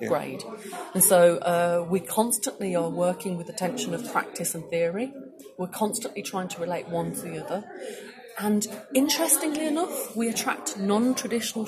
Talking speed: 155 wpm